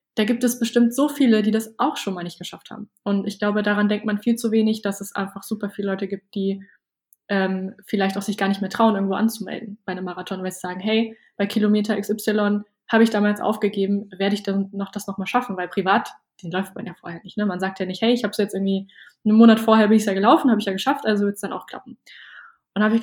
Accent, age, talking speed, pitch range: German, 20-39, 265 wpm, 195-220 Hz